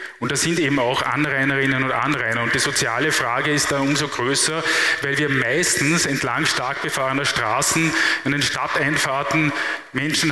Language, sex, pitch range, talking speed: German, male, 130-155 Hz, 155 wpm